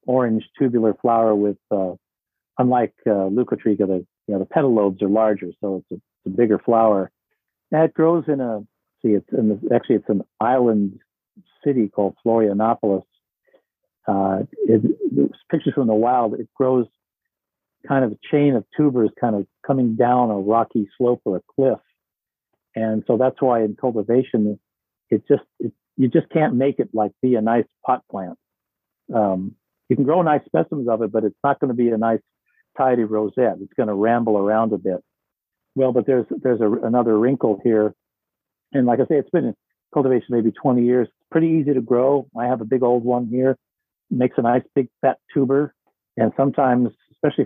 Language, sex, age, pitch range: English, male, 50-69, 110-130 Hz